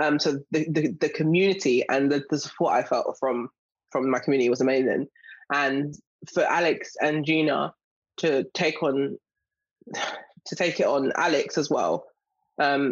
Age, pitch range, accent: 20-39, 140-160 Hz, British